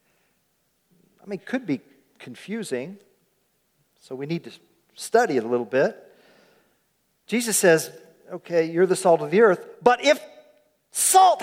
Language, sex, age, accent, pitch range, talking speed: English, male, 40-59, American, 170-245 Hz, 130 wpm